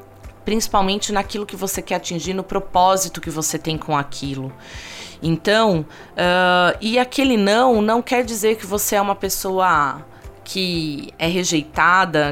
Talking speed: 135 wpm